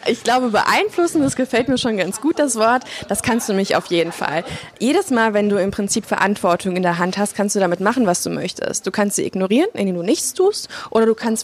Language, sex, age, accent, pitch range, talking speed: German, female, 20-39, German, 190-230 Hz, 245 wpm